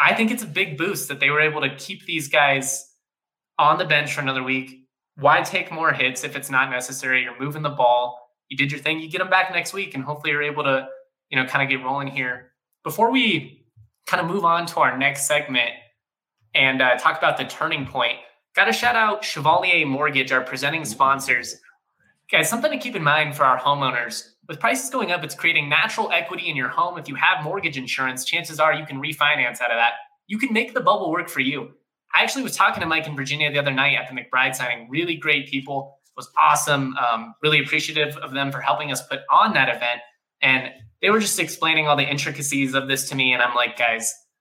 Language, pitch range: English, 130-165 Hz